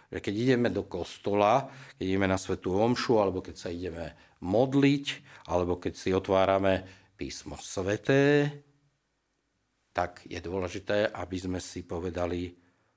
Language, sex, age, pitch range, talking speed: Slovak, male, 50-69, 90-115 Hz, 125 wpm